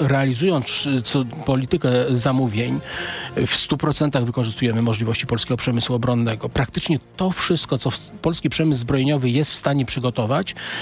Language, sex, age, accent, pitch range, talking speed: Polish, male, 40-59, native, 125-150 Hz, 115 wpm